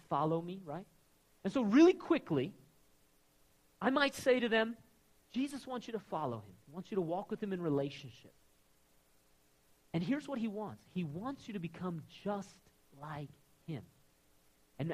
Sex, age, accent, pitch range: male, 40-59, American, 145-235 Hz